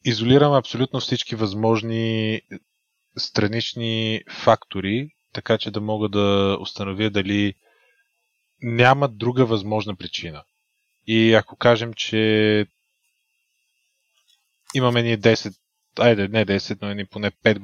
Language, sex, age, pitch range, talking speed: Bulgarian, male, 20-39, 105-130 Hz, 105 wpm